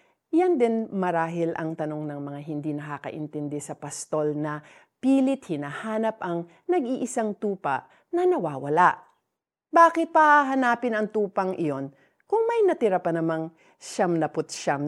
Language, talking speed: Filipino, 135 wpm